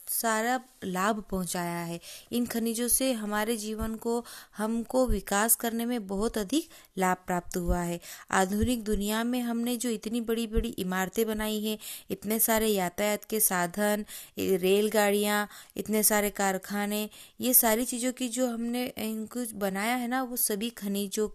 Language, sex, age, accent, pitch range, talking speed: Hindi, female, 20-39, native, 200-250 Hz, 150 wpm